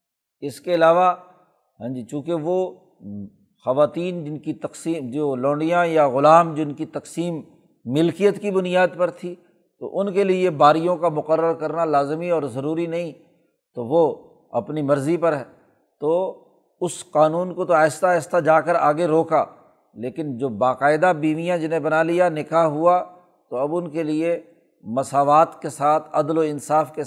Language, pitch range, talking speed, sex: Urdu, 145-175 Hz, 160 wpm, male